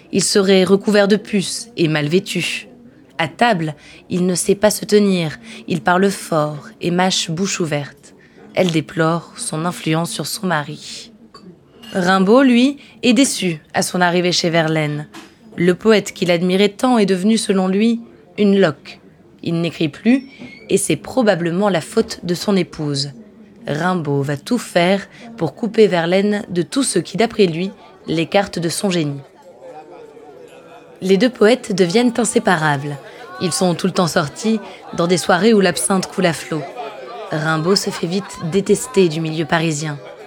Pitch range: 165-215 Hz